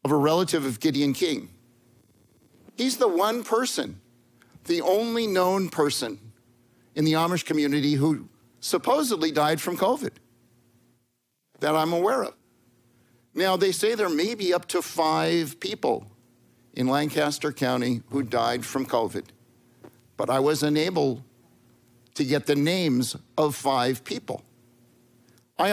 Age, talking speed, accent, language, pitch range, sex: 50-69, 130 wpm, American, English, 120-165 Hz, male